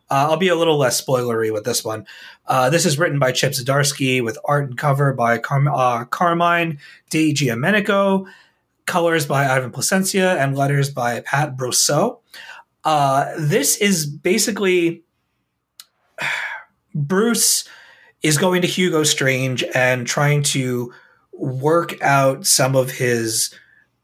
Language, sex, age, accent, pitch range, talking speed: English, male, 30-49, American, 125-165 Hz, 130 wpm